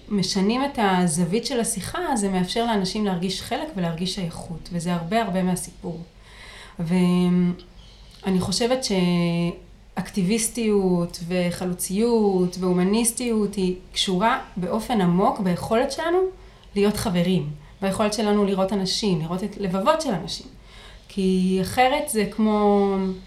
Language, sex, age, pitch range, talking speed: Hebrew, female, 30-49, 180-225 Hz, 110 wpm